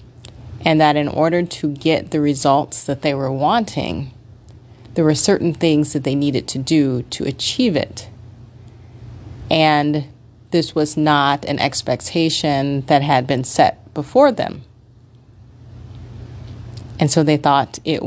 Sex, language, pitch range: female, English, 115-155 Hz